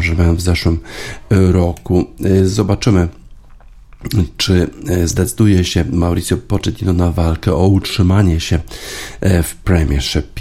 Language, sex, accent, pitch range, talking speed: Polish, male, native, 85-100 Hz, 100 wpm